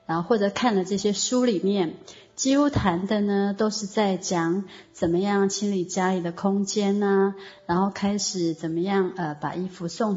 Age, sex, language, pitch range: 30-49, female, Chinese, 170-215 Hz